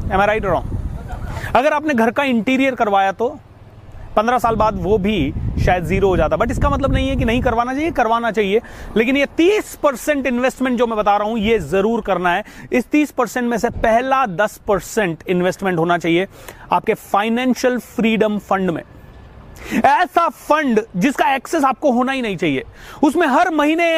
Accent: native